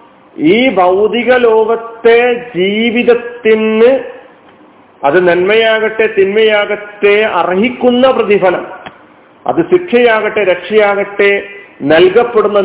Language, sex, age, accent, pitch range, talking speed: Malayalam, male, 40-59, native, 195-255 Hz, 60 wpm